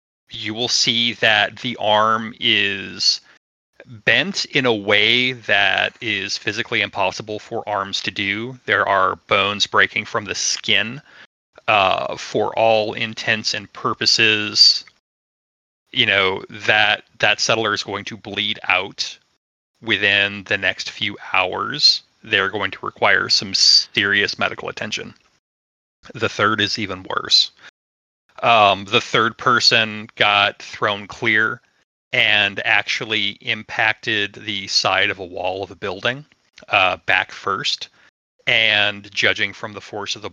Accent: American